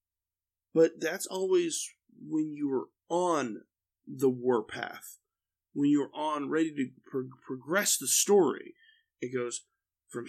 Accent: American